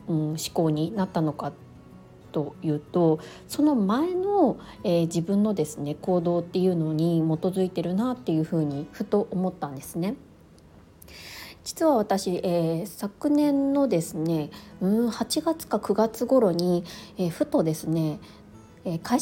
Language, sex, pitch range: Japanese, female, 170-250 Hz